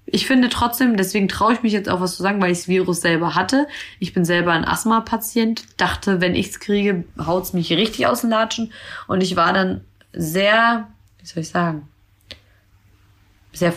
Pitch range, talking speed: 170-200 Hz, 190 wpm